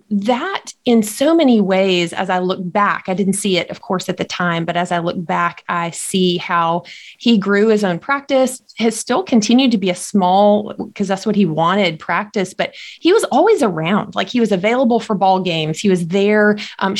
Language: English